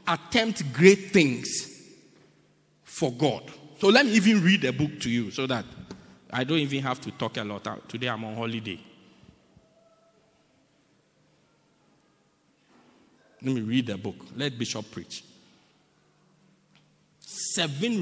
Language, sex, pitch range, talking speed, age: English, male, 135-190 Hz, 125 wpm, 50-69